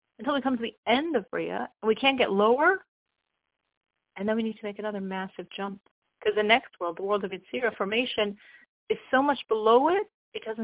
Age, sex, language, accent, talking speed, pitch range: 40-59, female, English, American, 210 wpm, 205-265 Hz